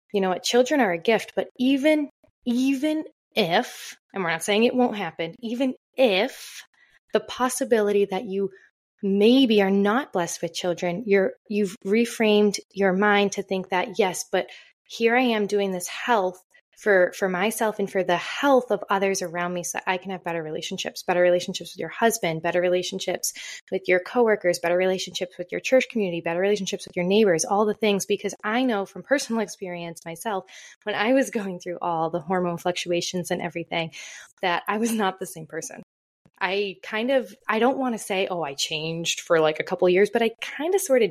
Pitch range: 175-215 Hz